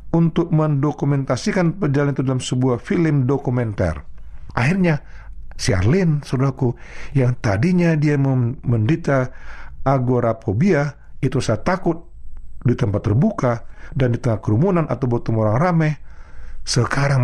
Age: 50-69